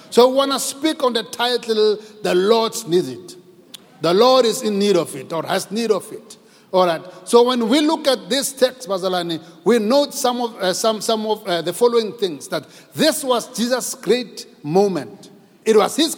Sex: male